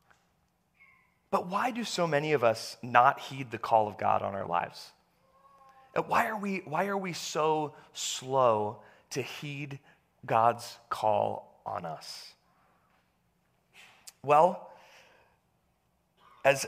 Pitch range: 120-170 Hz